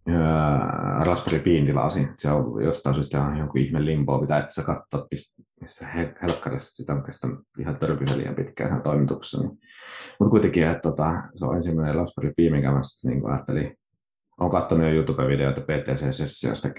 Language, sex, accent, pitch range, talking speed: Finnish, male, native, 70-80 Hz, 145 wpm